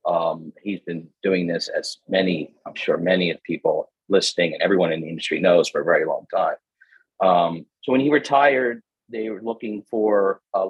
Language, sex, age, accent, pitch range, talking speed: English, male, 40-59, American, 95-120 Hz, 190 wpm